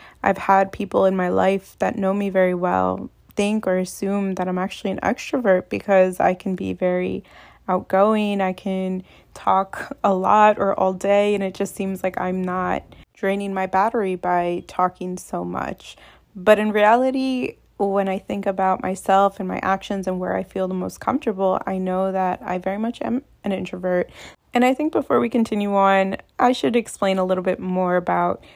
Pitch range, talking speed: 185-210 Hz, 185 wpm